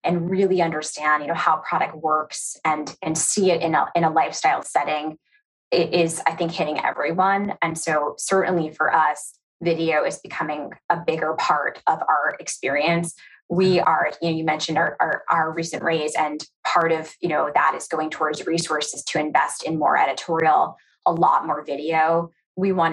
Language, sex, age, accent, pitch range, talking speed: English, female, 20-39, American, 155-185 Hz, 185 wpm